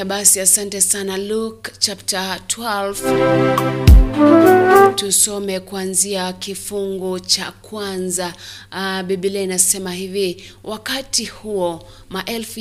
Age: 30-49